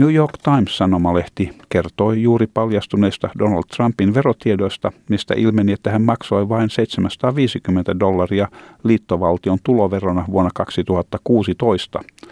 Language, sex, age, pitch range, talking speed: Finnish, male, 50-69, 90-115 Hz, 100 wpm